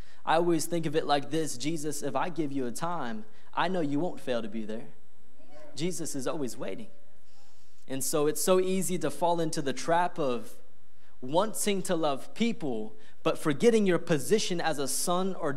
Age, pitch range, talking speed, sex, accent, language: 20-39, 135-175 Hz, 190 wpm, male, American, English